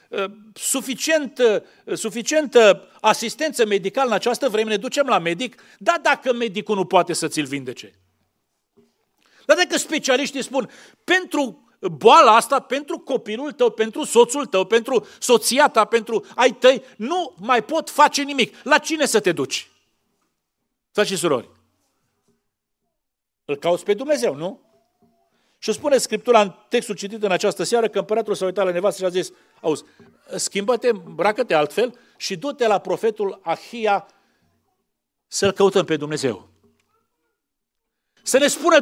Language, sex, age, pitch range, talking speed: Romanian, male, 40-59, 200-285 Hz, 140 wpm